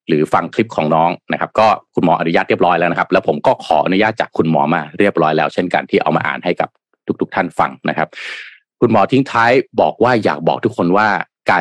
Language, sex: Thai, male